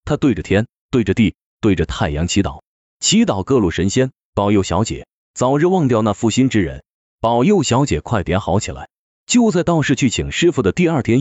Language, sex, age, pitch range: Chinese, male, 30-49, 95-145 Hz